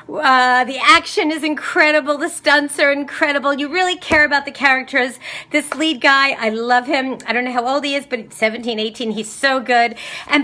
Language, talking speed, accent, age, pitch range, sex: English, 200 wpm, American, 40-59, 225-290 Hz, female